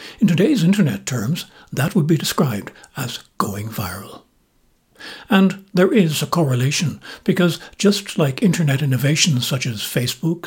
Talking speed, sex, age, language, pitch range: 140 wpm, male, 60-79, English, 125-170 Hz